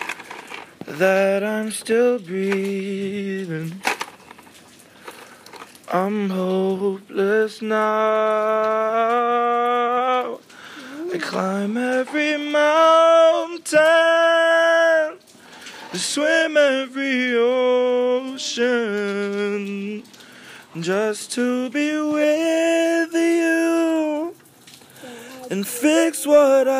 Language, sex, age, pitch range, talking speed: English, male, 20-39, 220-300 Hz, 50 wpm